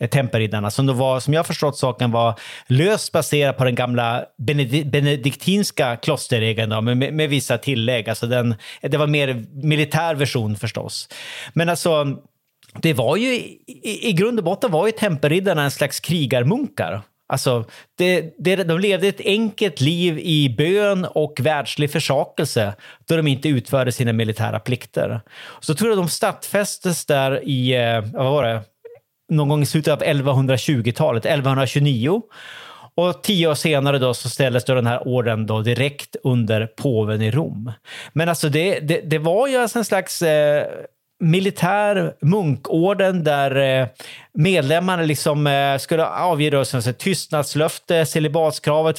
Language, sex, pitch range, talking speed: Swedish, male, 125-165 Hz, 150 wpm